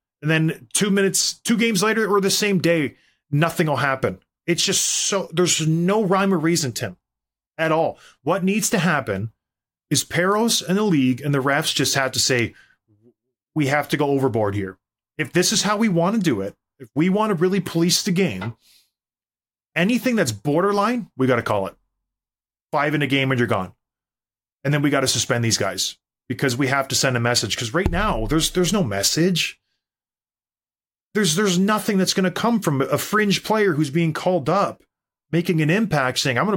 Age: 30-49